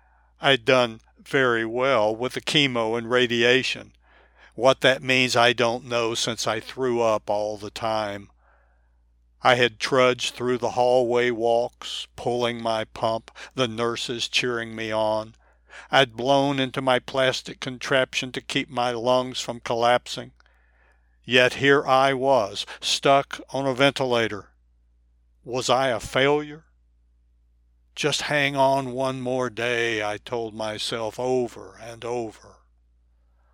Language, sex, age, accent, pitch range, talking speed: English, male, 60-79, American, 100-130 Hz, 130 wpm